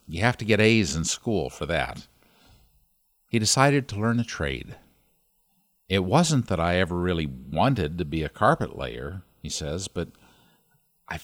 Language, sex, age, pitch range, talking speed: English, male, 50-69, 90-125 Hz, 165 wpm